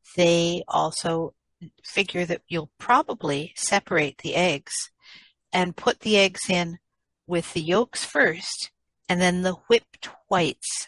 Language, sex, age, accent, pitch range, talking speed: English, female, 60-79, American, 170-200 Hz, 125 wpm